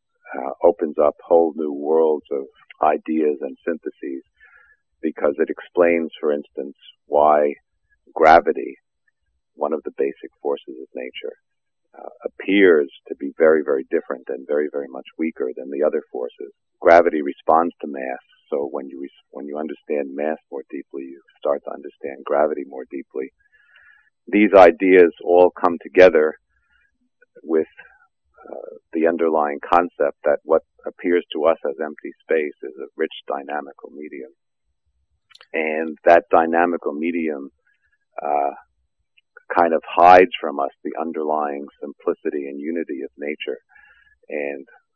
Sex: male